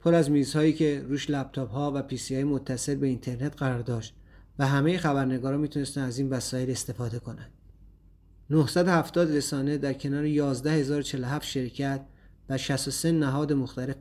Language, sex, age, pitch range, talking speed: Persian, male, 30-49, 125-145 Hz, 140 wpm